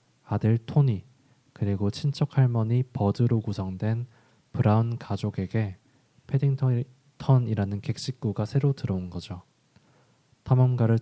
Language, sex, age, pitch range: Korean, male, 20-39, 100-130 Hz